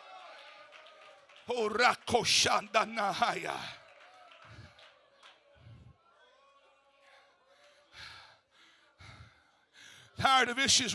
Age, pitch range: 60-79, 260-315 Hz